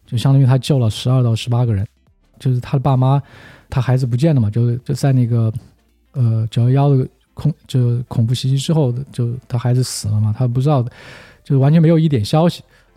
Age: 20-39